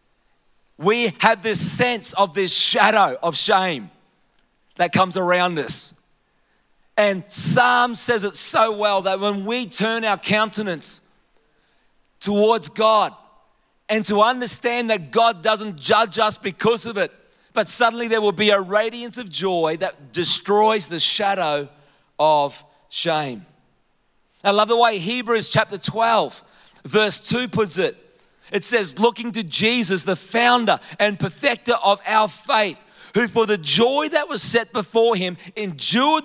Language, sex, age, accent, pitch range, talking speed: English, male, 40-59, Australian, 195-240 Hz, 145 wpm